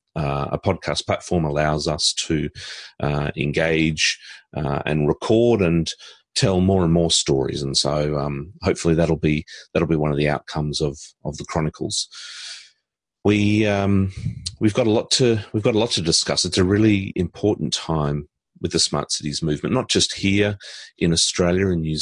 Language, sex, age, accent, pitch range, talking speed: English, male, 30-49, Australian, 80-95 Hz, 175 wpm